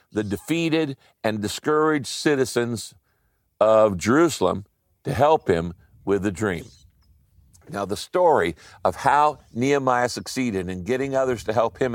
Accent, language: American, English